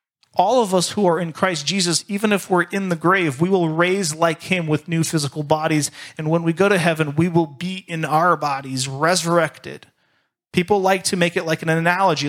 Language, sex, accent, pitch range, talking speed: English, male, American, 150-180 Hz, 215 wpm